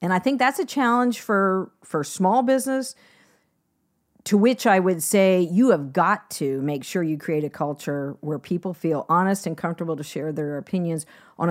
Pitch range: 160-210 Hz